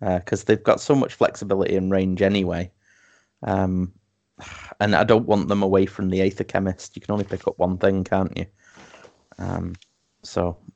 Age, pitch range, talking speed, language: 30-49, 95-105 Hz, 180 wpm, English